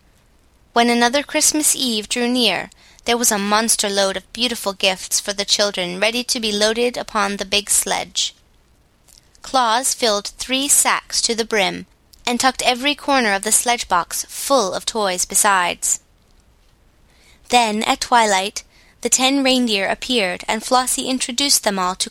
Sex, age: female, 20-39